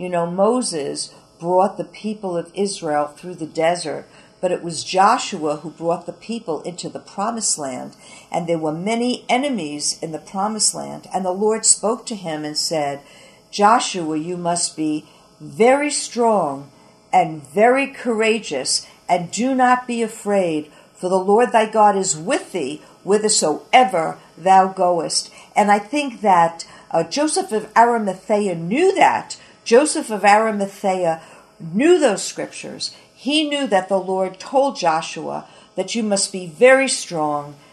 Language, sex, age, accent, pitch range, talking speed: English, female, 60-79, American, 165-235 Hz, 150 wpm